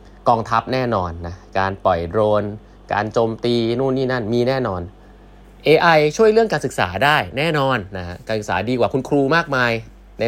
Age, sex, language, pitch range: 20-39, male, Thai, 95-130 Hz